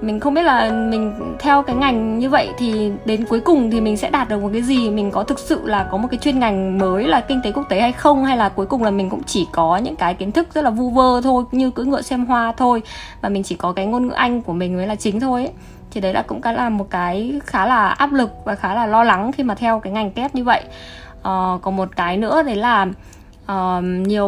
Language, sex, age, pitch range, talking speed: Vietnamese, female, 20-39, 195-255 Hz, 275 wpm